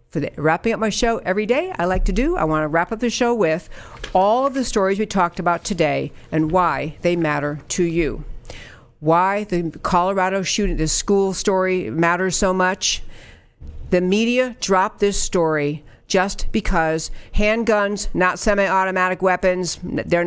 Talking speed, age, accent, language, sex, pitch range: 160 wpm, 50-69, American, English, female, 175-210 Hz